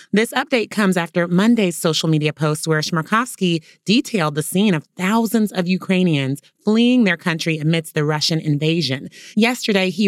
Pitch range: 155-205 Hz